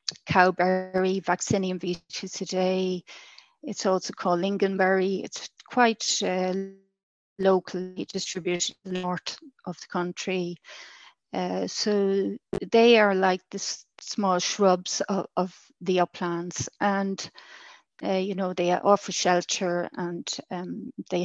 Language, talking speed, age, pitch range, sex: English, 115 wpm, 30-49, 180-205 Hz, female